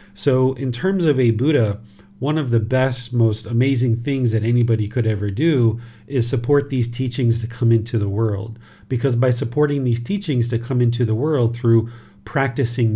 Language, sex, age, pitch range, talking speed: English, male, 40-59, 110-135 Hz, 180 wpm